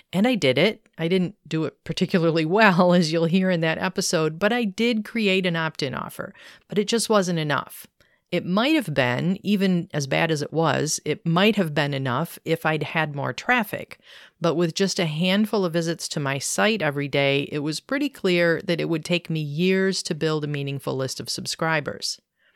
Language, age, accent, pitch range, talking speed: English, 40-59, American, 145-185 Hz, 205 wpm